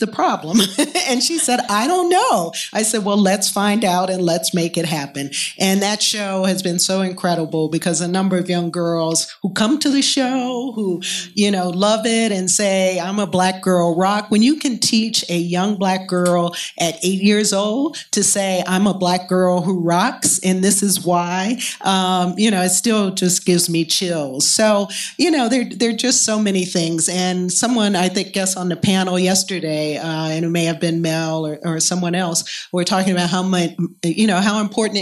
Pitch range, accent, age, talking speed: 175-215 Hz, American, 40-59, 205 wpm